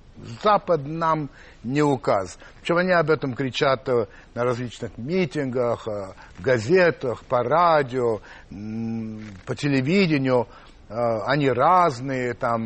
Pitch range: 115-155 Hz